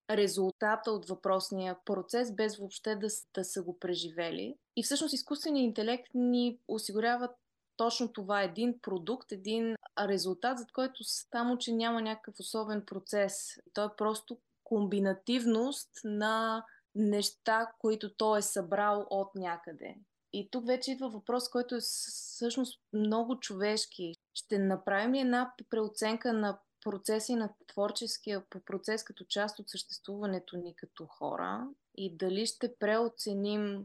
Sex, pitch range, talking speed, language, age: female, 190-230 Hz, 135 wpm, Bulgarian, 20-39